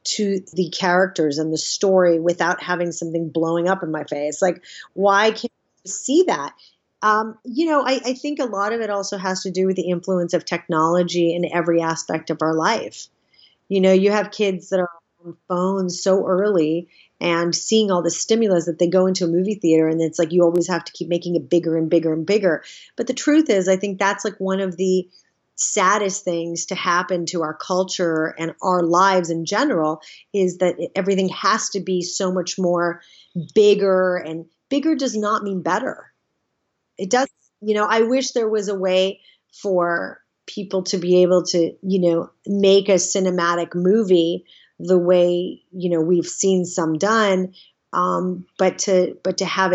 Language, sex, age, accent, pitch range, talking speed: English, female, 30-49, American, 170-195 Hz, 190 wpm